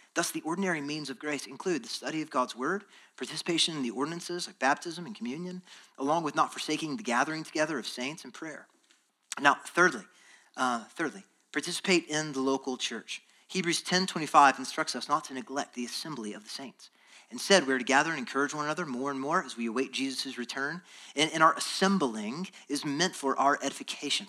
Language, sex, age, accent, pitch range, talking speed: English, male, 30-49, American, 135-175 Hz, 195 wpm